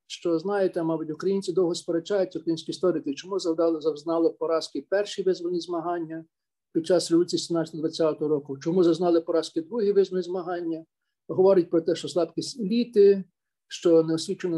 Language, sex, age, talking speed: Ukrainian, male, 50-69, 140 wpm